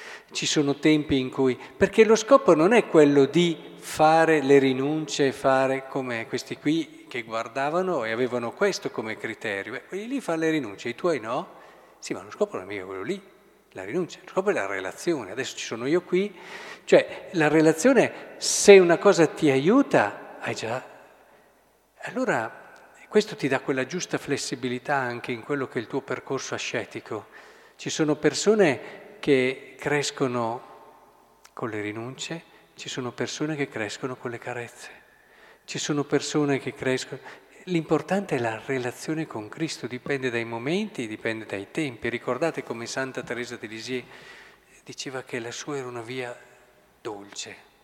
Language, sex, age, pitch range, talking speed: Italian, male, 50-69, 125-165 Hz, 160 wpm